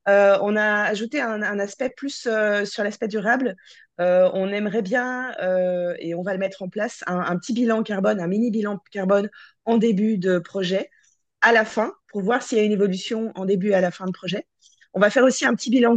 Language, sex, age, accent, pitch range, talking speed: French, female, 20-39, French, 175-220 Hz, 235 wpm